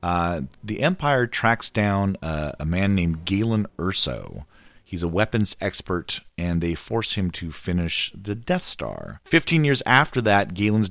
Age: 40-59